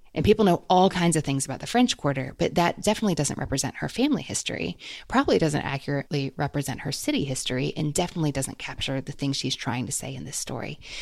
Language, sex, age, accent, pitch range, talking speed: English, female, 30-49, American, 140-180 Hz, 210 wpm